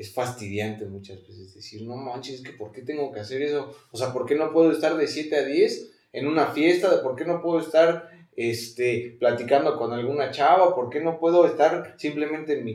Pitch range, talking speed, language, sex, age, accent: 105-130 Hz, 205 wpm, Spanish, male, 30-49, Mexican